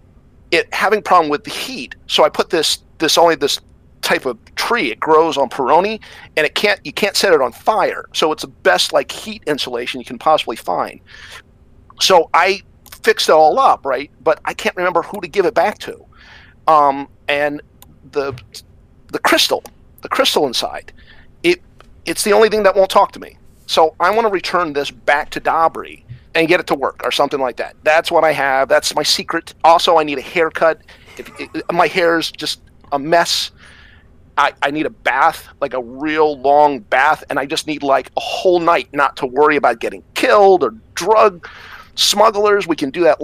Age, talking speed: 50-69, 200 wpm